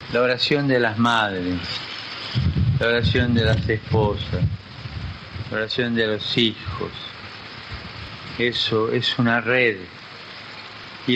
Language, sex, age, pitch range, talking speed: Spanish, male, 50-69, 110-130 Hz, 110 wpm